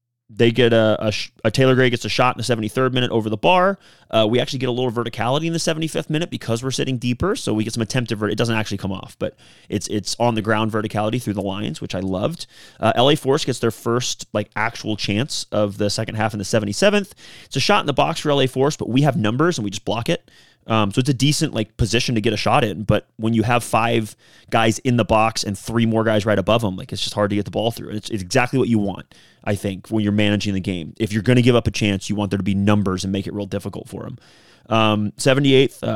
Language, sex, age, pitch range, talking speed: English, male, 30-49, 105-125 Hz, 270 wpm